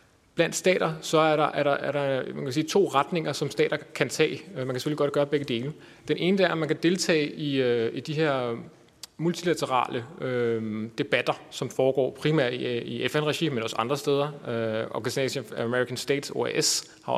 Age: 30-49